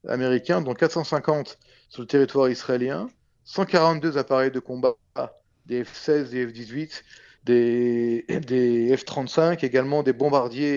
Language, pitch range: French, 120-150 Hz